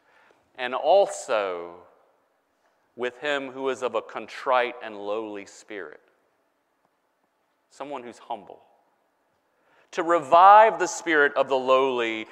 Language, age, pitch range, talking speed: English, 40-59, 130-205 Hz, 105 wpm